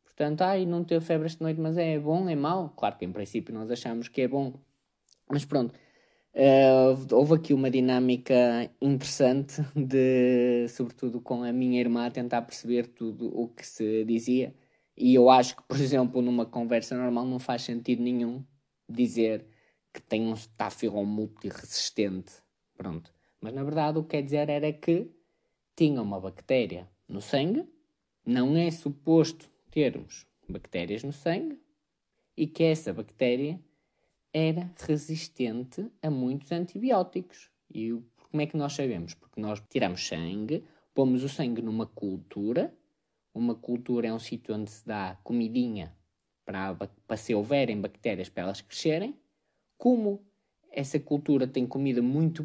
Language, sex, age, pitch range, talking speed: Portuguese, male, 20-39, 115-155 Hz, 150 wpm